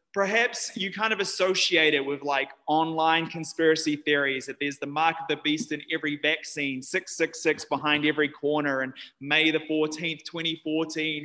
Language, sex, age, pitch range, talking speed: English, male, 20-39, 150-185 Hz, 160 wpm